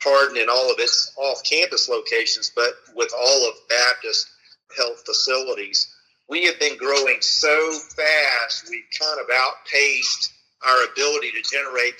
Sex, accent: male, American